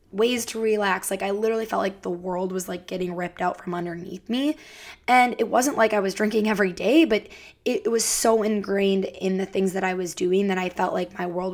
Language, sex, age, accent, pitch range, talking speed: English, female, 20-39, American, 180-210 Hz, 240 wpm